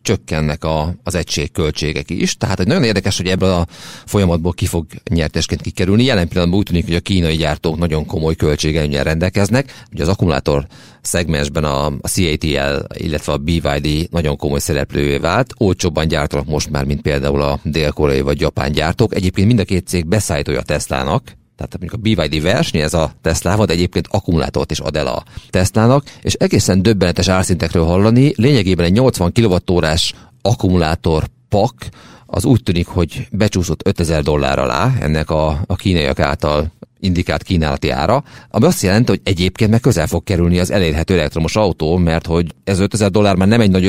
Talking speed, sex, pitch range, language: 175 wpm, male, 80-105 Hz, Hungarian